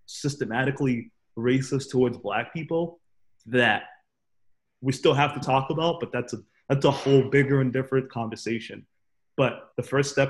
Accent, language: American, English